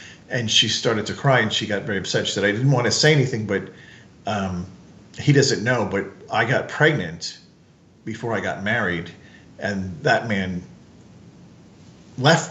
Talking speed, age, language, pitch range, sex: 170 wpm, 40-59, English, 105-135 Hz, male